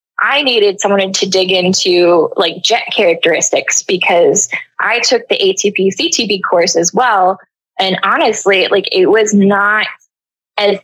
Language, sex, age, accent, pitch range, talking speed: English, female, 20-39, American, 180-210 Hz, 140 wpm